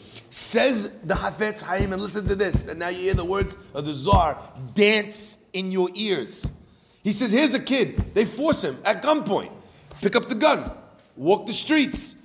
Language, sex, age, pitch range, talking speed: English, male, 30-49, 185-265 Hz, 185 wpm